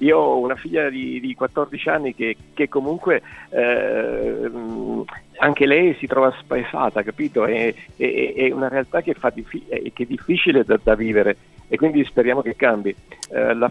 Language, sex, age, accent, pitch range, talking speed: Italian, male, 50-69, native, 115-135 Hz, 170 wpm